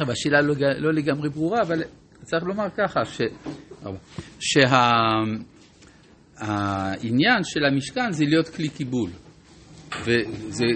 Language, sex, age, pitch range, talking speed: Hebrew, male, 60-79, 120-175 Hz, 100 wpm